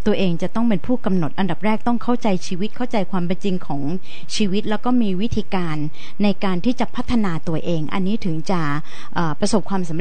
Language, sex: Thai, female